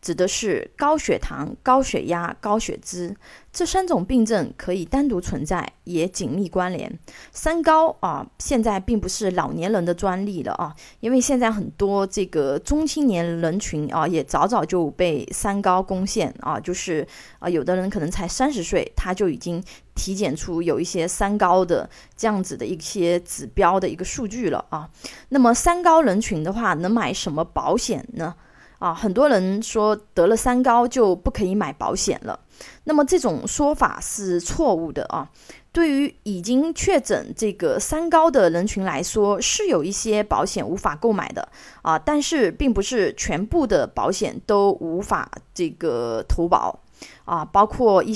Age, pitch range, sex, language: 20-39, 185-260 Hz, female, Chinese